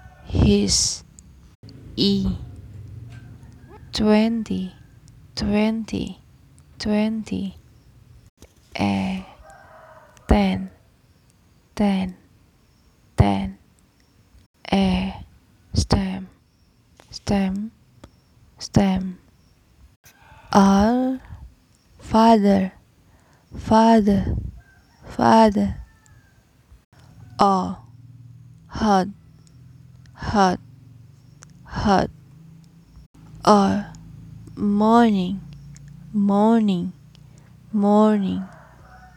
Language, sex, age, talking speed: Indonesian, female, 20-39, 40 wpm